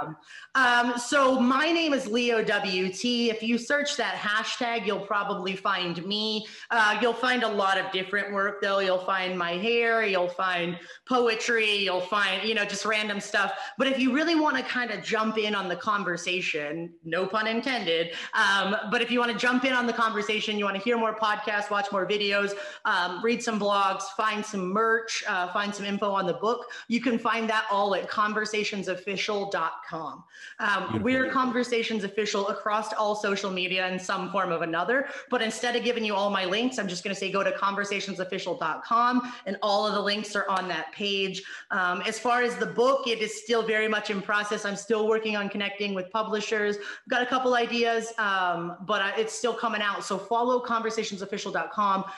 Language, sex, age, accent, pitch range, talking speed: English, female, 30-49, American, 195-230 Hz, 195 wpm